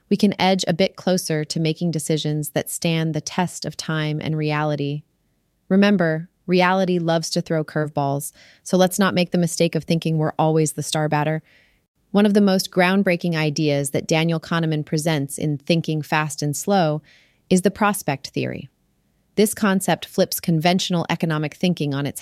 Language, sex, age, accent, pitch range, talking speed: English, female, 30-49, American, 150-185 Hz, 170 wpm